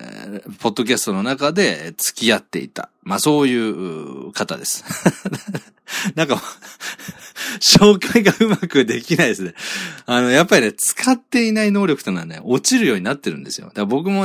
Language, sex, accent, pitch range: Japanese, male, native, 125-195 Hz